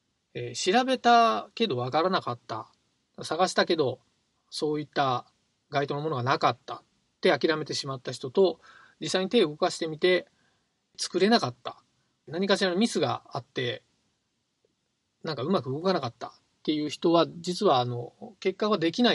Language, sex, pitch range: Japanese, male, 125-180 Hz